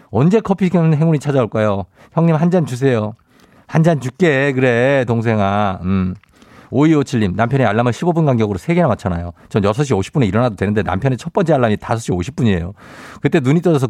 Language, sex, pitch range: Korean, male, 105-170 Hz